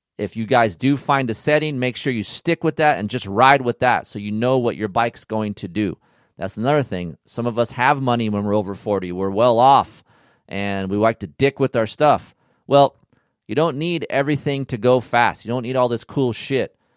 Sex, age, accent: male, 30-49, American